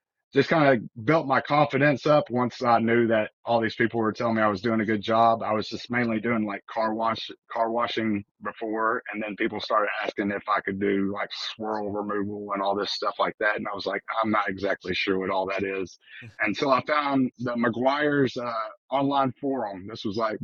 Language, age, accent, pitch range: English, 30-49, American, 105-120 Hz